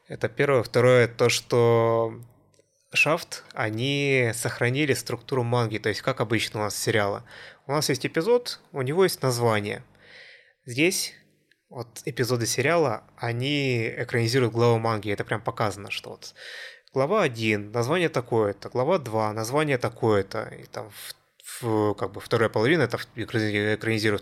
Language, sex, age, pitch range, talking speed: Russian, male, 20-39, 110-130 Hz, 140 wpm